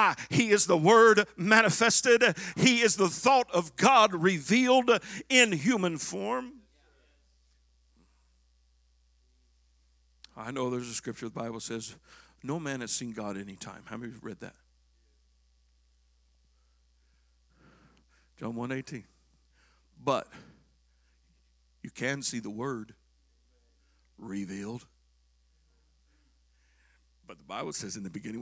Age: 60-79